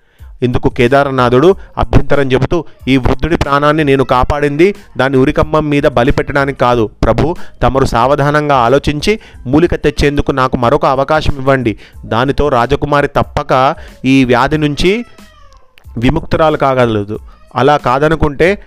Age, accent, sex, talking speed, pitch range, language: 30-49, native, male, 110 wpm, 120-145 Hz, Telugu